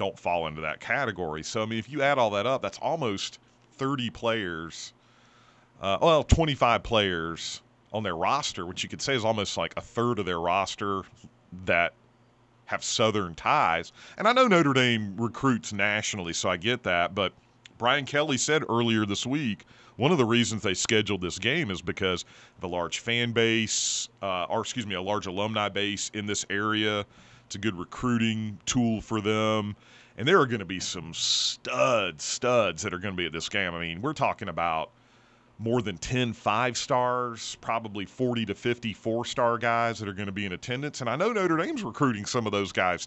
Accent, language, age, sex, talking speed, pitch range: American, English, 40-59, male, 190 wpm, 100-120 Hz